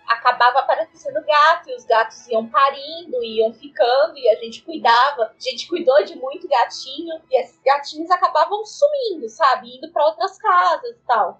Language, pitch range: Portuguese, 255-355 Hz